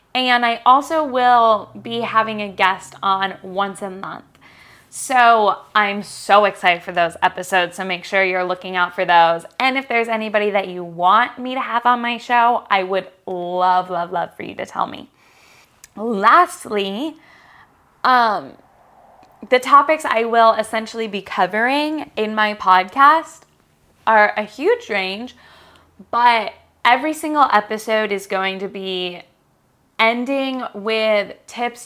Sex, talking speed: female, 145 wpm